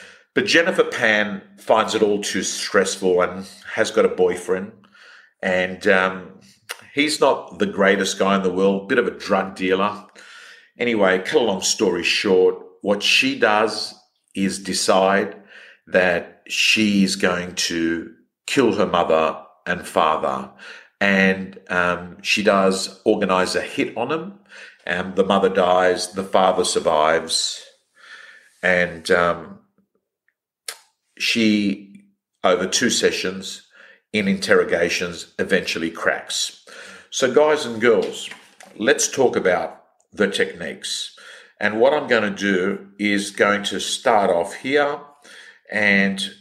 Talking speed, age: 125 wpm, 50-69